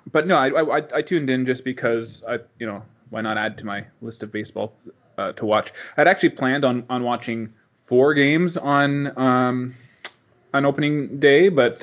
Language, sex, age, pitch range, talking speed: English, male, 20-39, 110-130 Hz, 190 wpm